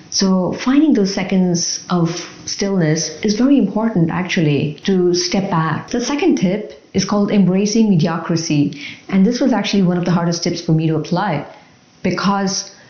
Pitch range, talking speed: 165-210 Hz, 160 wpm